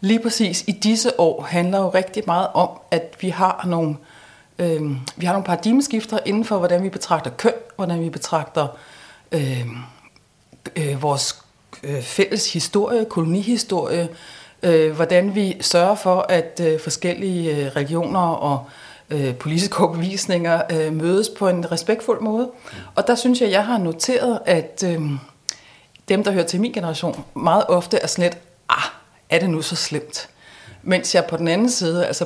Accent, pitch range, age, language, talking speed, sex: native, 165-195 Hz, 30-49, Danish, 160 wpm, female